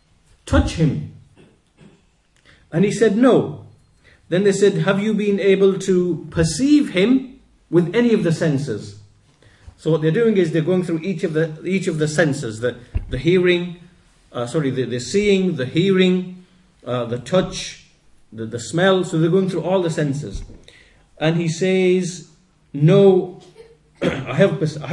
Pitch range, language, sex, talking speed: 135-185 Hz, English, male, 155 wpm